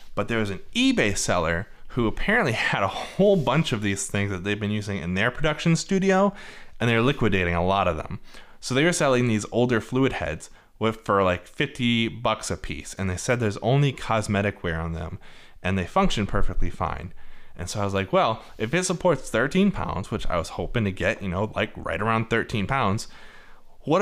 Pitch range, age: 95-125 Hz, 20-39